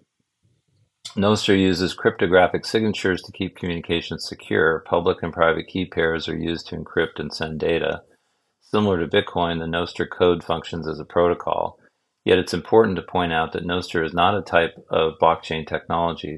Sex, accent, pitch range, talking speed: male, American, 80-90 Hz, 165 wpm